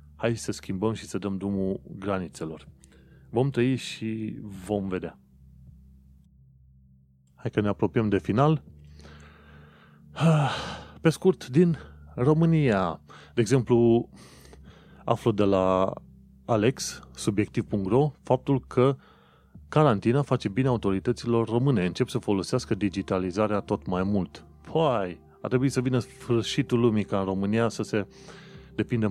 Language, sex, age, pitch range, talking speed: Romanian, male, 30-49, 90-115 Hz, 120 wpm